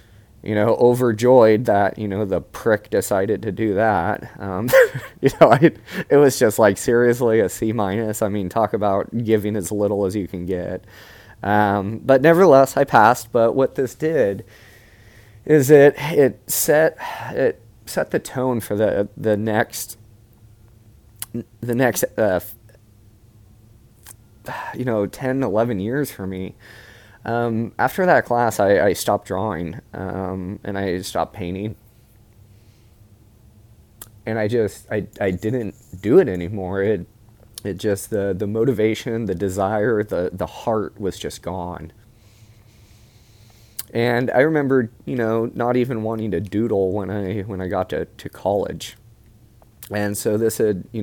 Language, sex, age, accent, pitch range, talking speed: English, male, 20-39, American, 100-115 Hz, 145 wpm